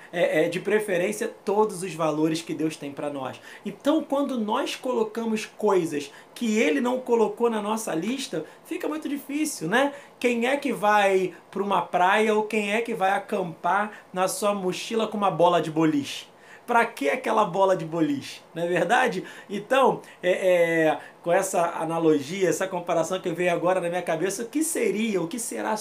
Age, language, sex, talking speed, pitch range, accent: 20-39, Portuguese, male, 180 wpm, 170-220 Hz, Brazilian